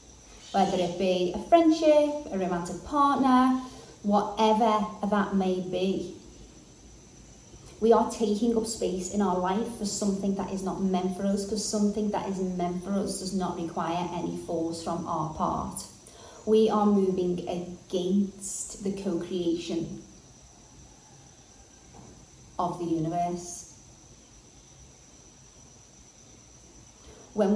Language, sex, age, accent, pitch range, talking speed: English, female, 30-49, British, 175-210 Hz, 115 wpm